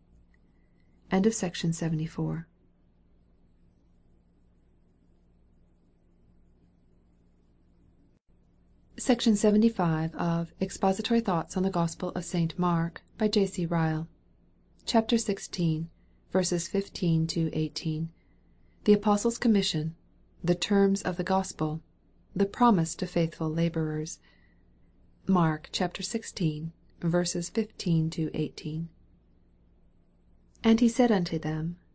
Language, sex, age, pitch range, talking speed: English, female, 40-59, 155-195 Hz, 95 wpm